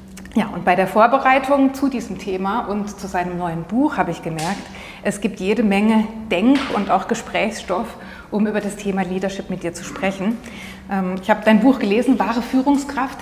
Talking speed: 180 wpm